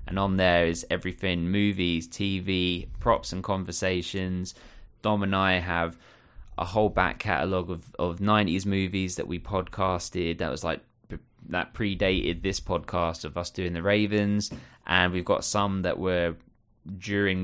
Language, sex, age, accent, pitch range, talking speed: English, male, 20-39, British, 85-100 Hz, 150 wpm